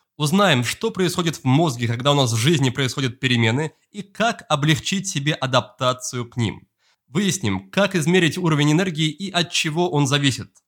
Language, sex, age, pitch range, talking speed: Russian, male, 20-39, 125-170 Hz, 165 wpm